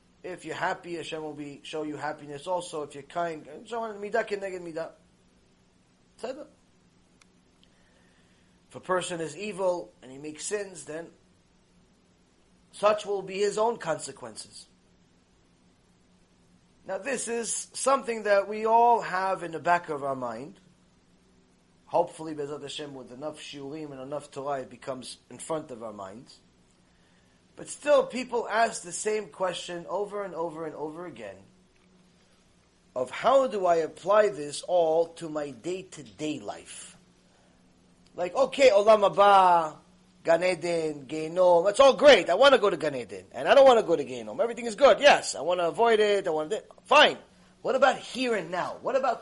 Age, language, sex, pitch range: 30-49, English, male, 145-200 Hz